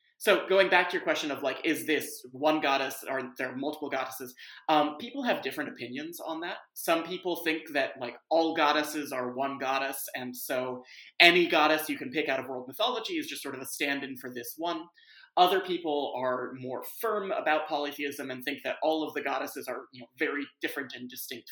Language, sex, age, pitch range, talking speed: English, male, 30-49, 130-215 Hz, 205 wpm